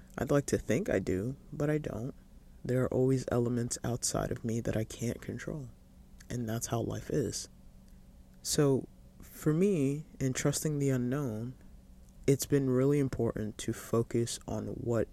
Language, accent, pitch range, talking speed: English, American, 105-135 Hz, 160 wpm